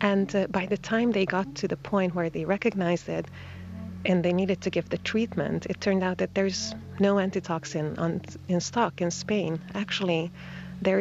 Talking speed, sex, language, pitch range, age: 185 wpm, female, English, 155-185 Hz, 30-49